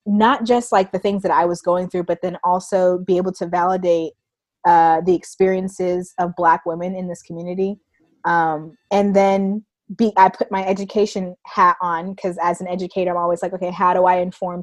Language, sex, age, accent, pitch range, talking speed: English, female, 20-39, American, 175-205 Hz, 195 wpm